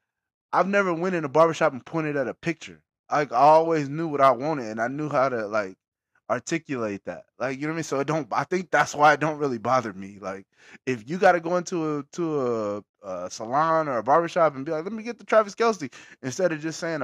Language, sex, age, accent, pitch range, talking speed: English, male, 20-39, American, 125-160 Hz, 250 wpm